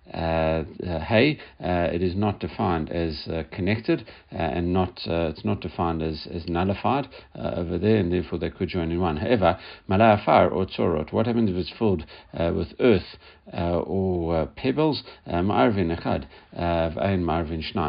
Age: 60-79